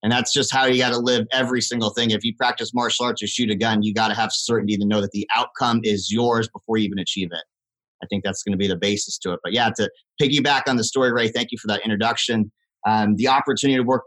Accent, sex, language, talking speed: American, male, English, 275 wpm